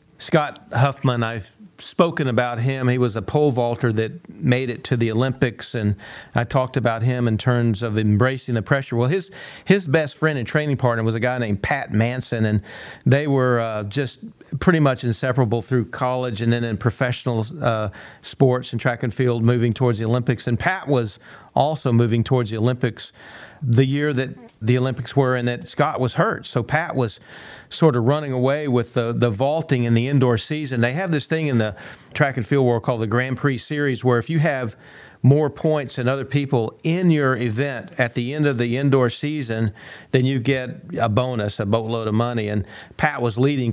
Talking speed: 200 wpm